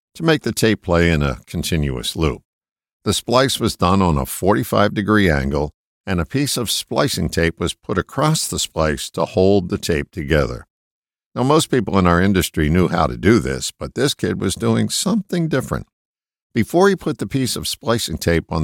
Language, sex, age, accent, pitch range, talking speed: English, male, 50-69, American, 85-120 Hz, 195 wpm